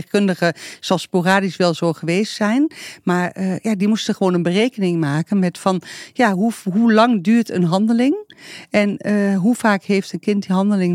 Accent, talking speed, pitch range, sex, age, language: Dutch, 180 wpm, 185-230 Hz, female, 40-59, Dutch